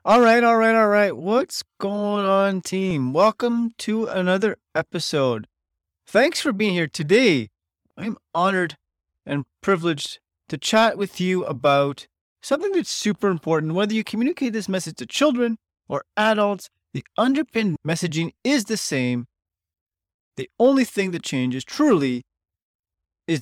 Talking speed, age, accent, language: 140 wpm, 30-49, American, English